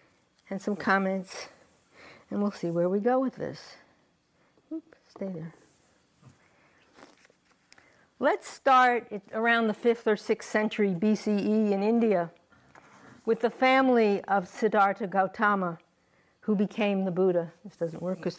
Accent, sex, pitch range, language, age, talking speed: American, female, 185-225 Hz, English, 60-79, 125 wpm